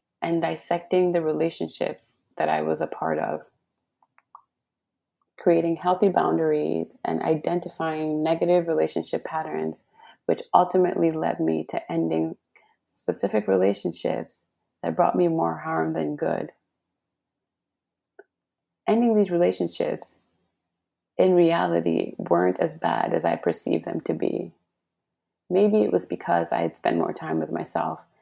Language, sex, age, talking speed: English, female, 30-49, 125 wpm